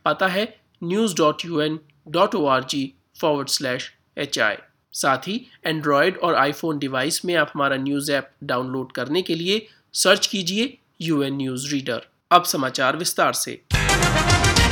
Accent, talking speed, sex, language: native, 120 wpm, male, Hindi